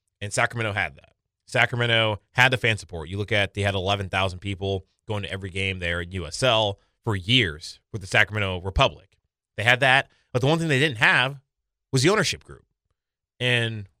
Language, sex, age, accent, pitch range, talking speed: English, male, 30-49, American, 100-145 Hz, 195 wpm